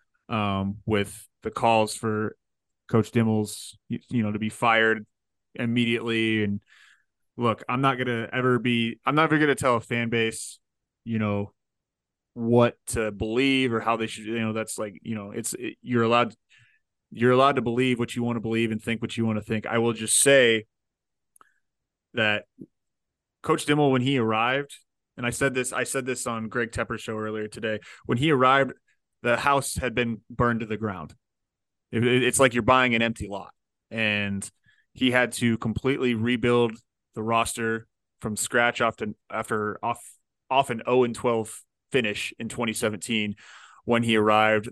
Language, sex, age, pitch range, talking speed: English, male, 20-39, 110-125 Hz, 175 wpm